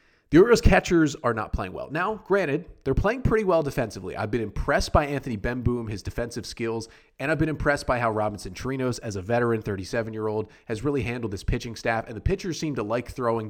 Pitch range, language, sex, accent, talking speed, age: 105-145 Hz, English, male, American, 215 wpm, 30-49